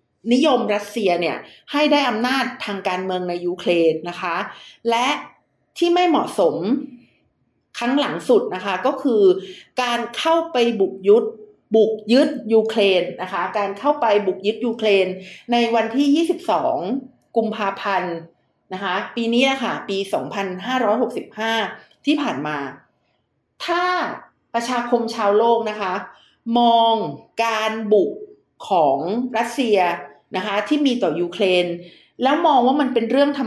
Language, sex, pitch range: Thai, female, 200-275 Hz